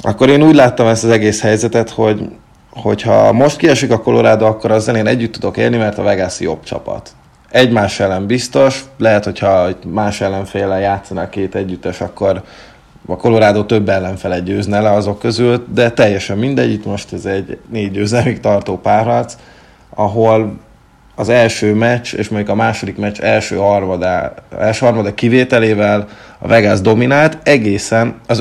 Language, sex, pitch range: Hungarian, male, 100-115 Hz